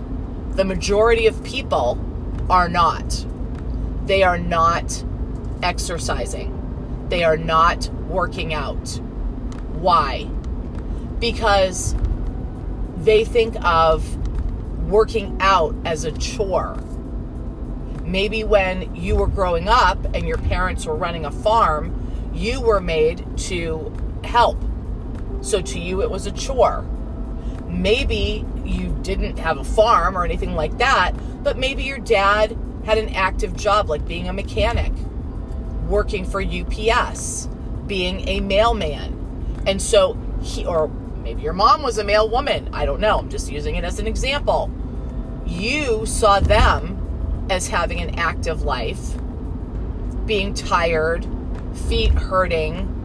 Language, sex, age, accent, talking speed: English, female, 40-59, American, 125 wpm